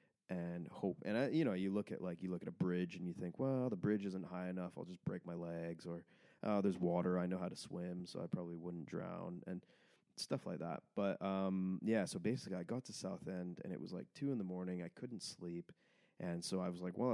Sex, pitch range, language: male, 90-100 Hz, English